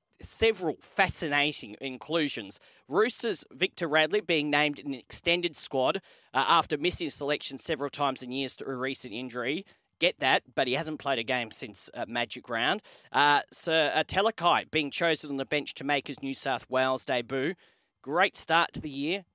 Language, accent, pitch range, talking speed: English, Australian, 135-170 Hz, 175 wpm